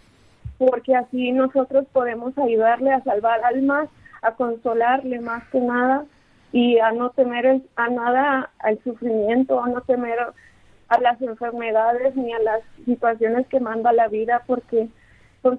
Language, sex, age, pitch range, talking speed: Spanish, female, 20-39, 230-255 Hz, 145 wpm